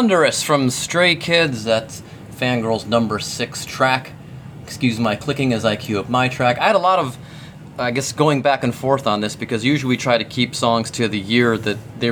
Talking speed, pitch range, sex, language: 215 wpm, 115-150 Hz, male, English